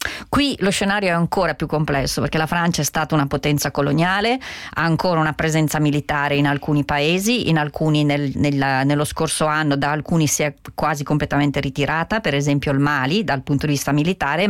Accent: native